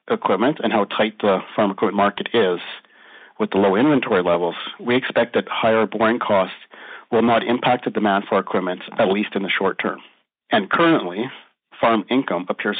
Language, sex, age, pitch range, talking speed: English, male, 40-59, 105-120 Hz, 180 wpm